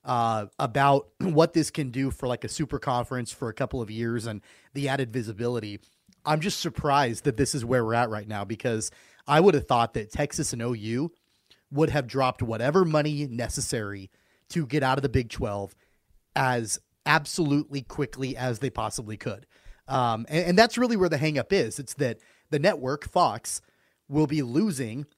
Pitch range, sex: 115-150 Hz, male